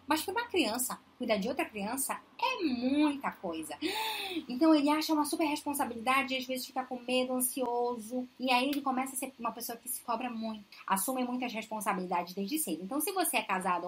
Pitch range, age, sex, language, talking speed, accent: 205-300 Hz, 10-29, female, Portuguese, 200 wpm, Brazilian